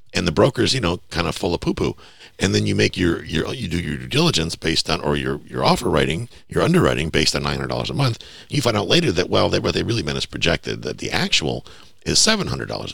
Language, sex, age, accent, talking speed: English, male, 50-69, American, 265 wpm